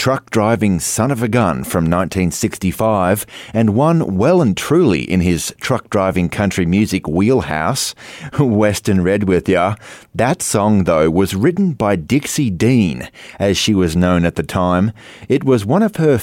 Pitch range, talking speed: 95-130 Hz, 155 wpm